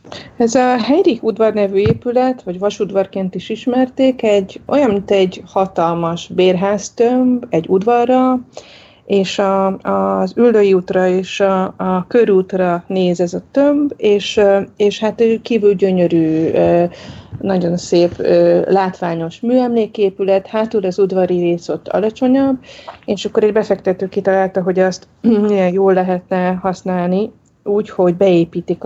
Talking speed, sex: 125 wpm, female